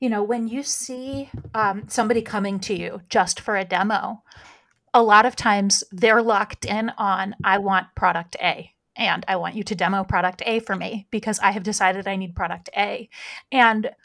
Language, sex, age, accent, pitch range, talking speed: English, female, 30-49, American, 200-245 Hz, 190 wpm